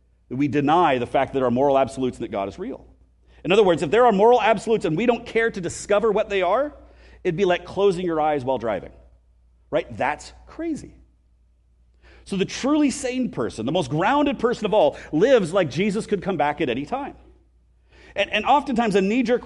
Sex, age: male, 40-59